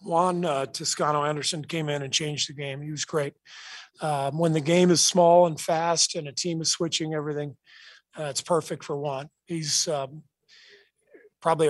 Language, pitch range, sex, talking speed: English, 145-165 Hz, male, 180 wpm